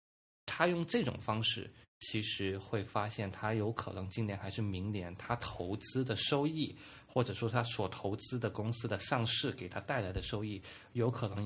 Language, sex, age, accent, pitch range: Chinese, male, 20-39, native, 100-125 Hz